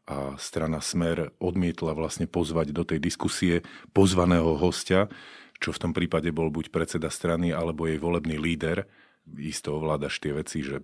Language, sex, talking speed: Slovak, male, 155 wpm